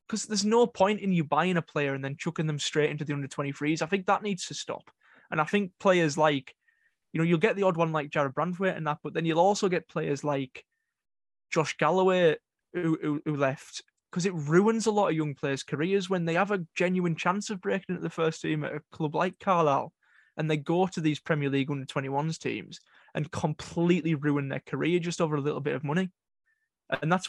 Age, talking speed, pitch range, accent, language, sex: 20-39, 225 wpm, 150-185 Hz, British, English, male